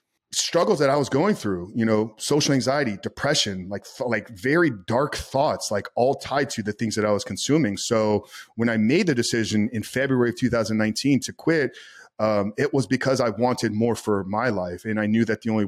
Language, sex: English, male